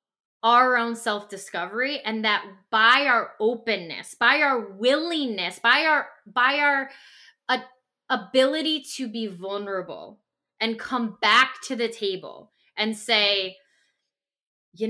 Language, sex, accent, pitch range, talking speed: English, female, American, 220-310 Hz, 115 wpm